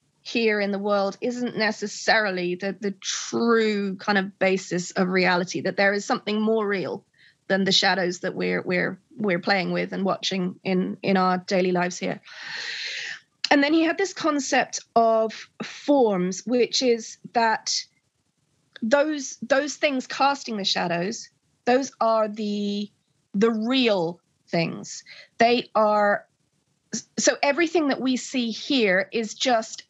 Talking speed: 140 wpm